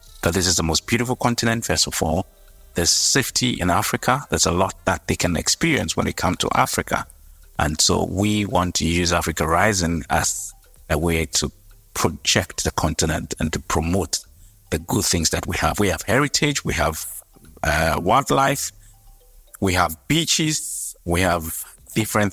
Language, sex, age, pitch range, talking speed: English, male, 50-69, 80-100 Hz, 170 wpm